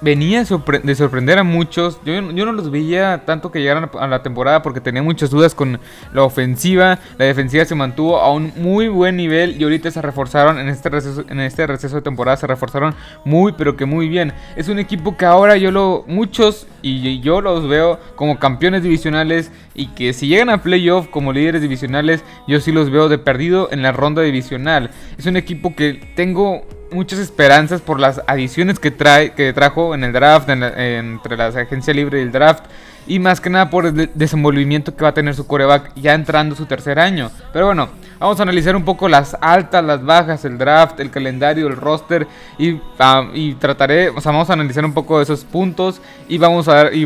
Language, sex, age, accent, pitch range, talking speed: Spanish, male, 20-39, Mexican, 140-170 Hz, 215 wpm